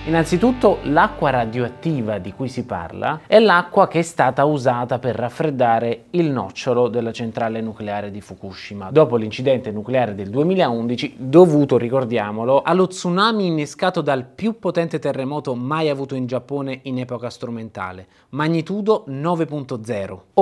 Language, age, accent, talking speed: Italian, 20-39, native, 130 wpm